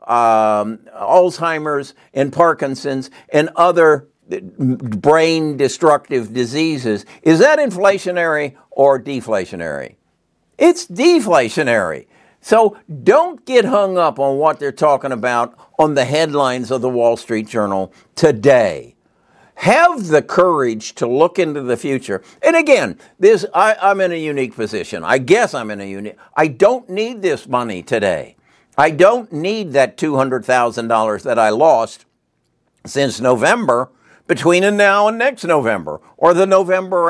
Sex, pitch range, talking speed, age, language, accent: male, 125-185 Hz, 130 wpm, 60-79, English, American